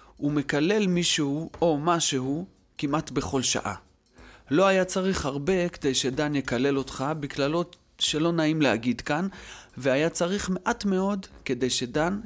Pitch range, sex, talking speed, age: 115-170 Hz, male, 130 wpm, 30-49